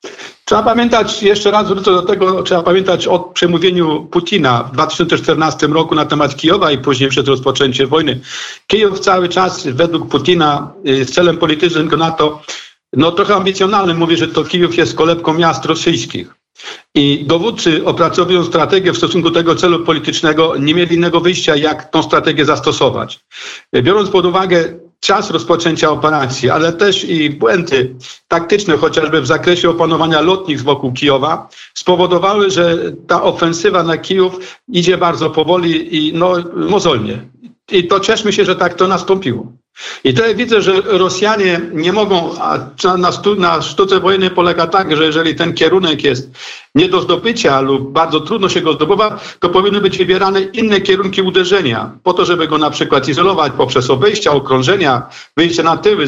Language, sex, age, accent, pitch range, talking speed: Polish, male, 50-69, native, 155-190 Hz, 160 wpm